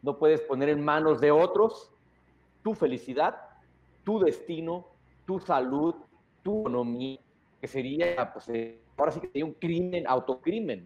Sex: male